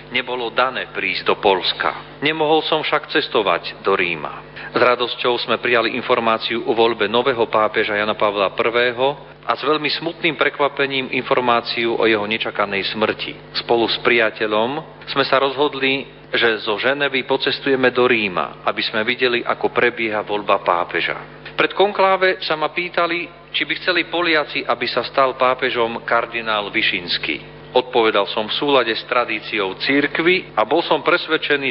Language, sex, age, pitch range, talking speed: Slovak, male, 40-59, 115-150 Hz, 150 wpm